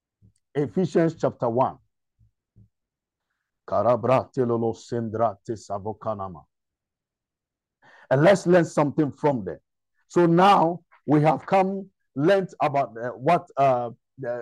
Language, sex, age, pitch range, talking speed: English, male, 50-69, 125-155 Hz, 85 wpm